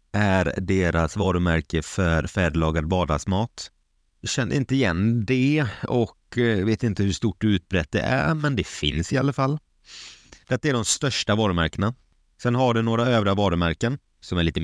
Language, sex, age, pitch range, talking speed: Swedish, male, 30-49, 80-110 Hz, 155 wpm